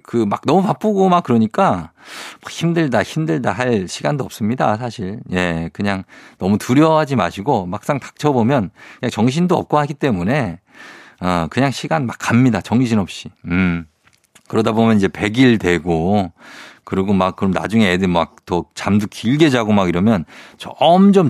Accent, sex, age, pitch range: native, male, 50-69, 100-140 Hz